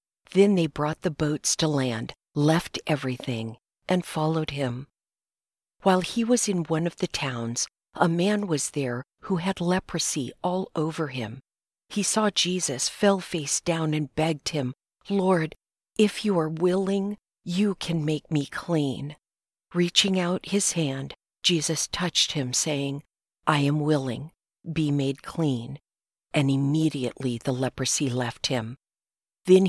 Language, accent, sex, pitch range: English, American, female, 140-175 Hz